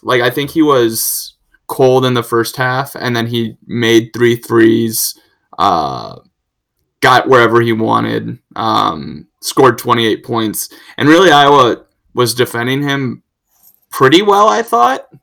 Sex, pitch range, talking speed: male, 115-130 Hz, 140 wpm